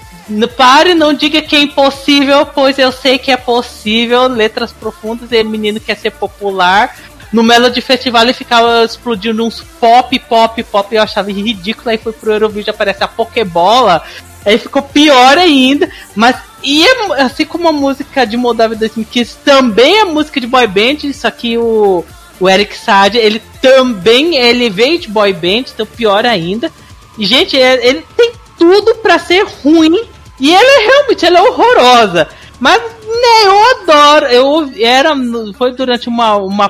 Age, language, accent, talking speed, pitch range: 40-59, Portuguese, Brazilian, 165 wpm, 210-280 Hz